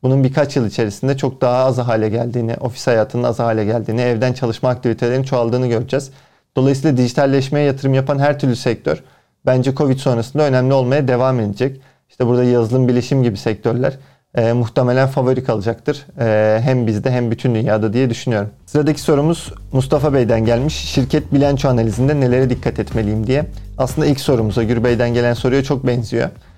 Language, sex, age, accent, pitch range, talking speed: Turkish, male, 40-59, native, 115-135 Hz, 165 wpm